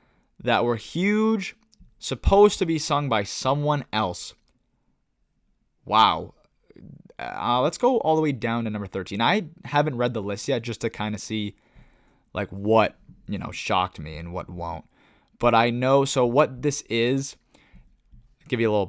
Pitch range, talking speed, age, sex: 100-130 Hz, 165 wpm, 20-39, male